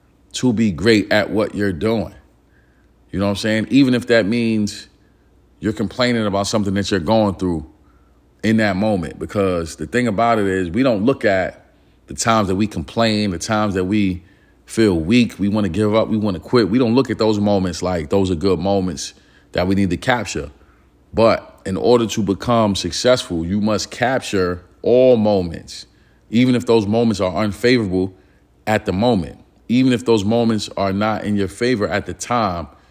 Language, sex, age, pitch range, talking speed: English, male, 40-59, 90-115 Hz, 190 wpm